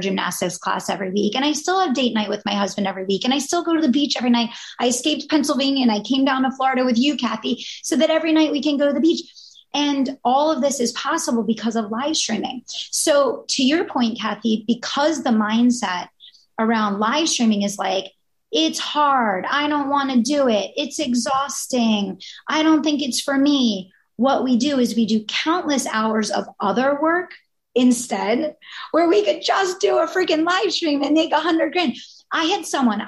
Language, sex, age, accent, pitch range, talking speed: English, female, 30-49, American, 210-290 Hz, 205 wpm